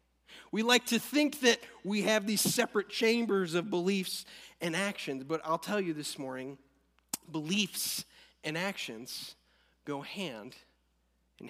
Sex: male